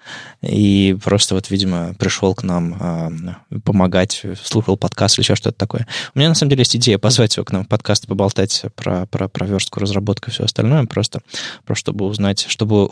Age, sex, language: 20-39, male, Russian